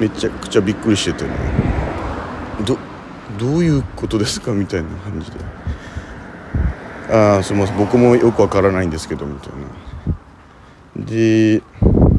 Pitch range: 80-110 Hz